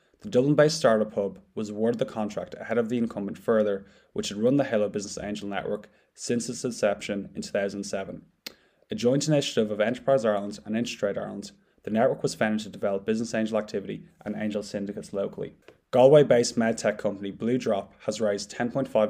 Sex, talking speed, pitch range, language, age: male, 175 wpm, 105-120 Hz, English, 20-39